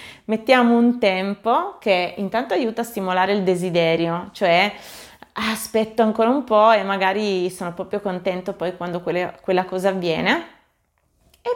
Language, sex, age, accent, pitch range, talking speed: Italian, female, 20-39, native, 185-230 Hz, 135 wpm